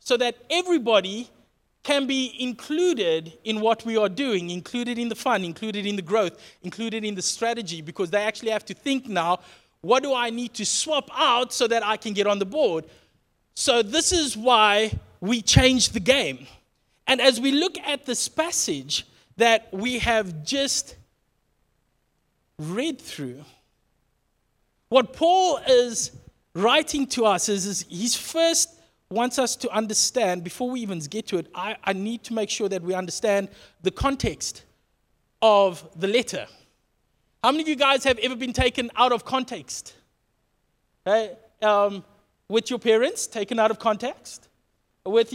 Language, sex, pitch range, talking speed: English, male, 205-265 Hz, 160 wpm